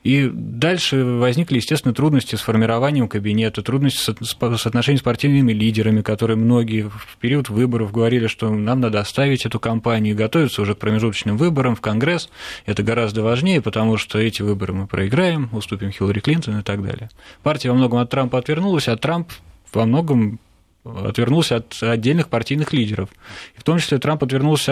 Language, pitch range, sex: Russian, 105-130 Hz, male